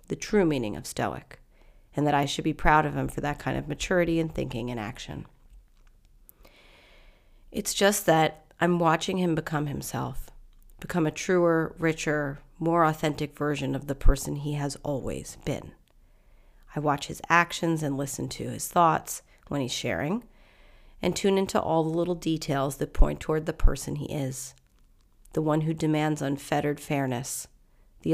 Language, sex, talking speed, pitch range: English, female, 165 wpm, 135-165 Hz